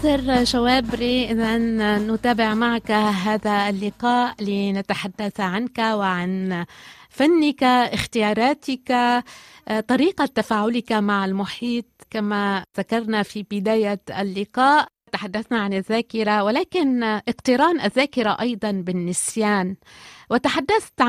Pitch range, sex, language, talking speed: 195-240 Hz, female, Arabic, 85 wpm